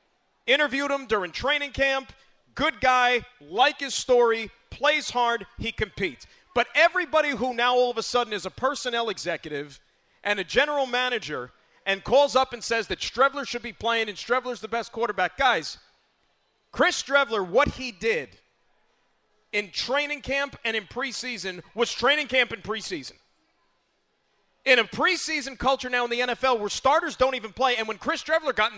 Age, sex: 40-59, male